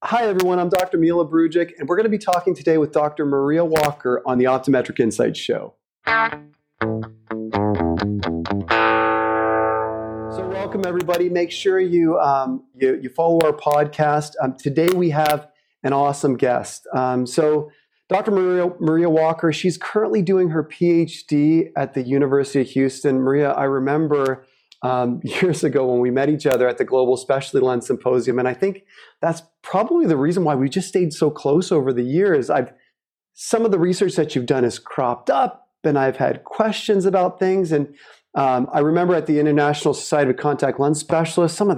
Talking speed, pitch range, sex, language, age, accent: 175 wpm, 130-175 Hz, male, English, 40-59, American